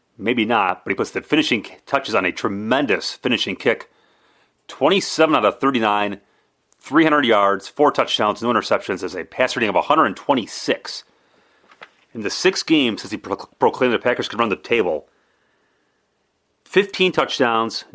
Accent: American